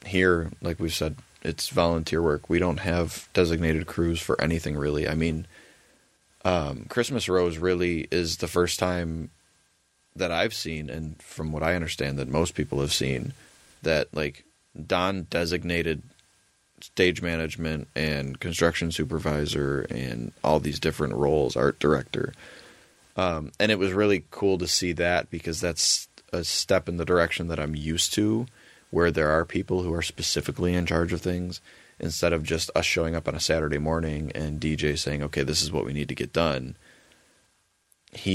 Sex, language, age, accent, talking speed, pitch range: male, English, 20-39, American, 170 wpm, 75-85 Hz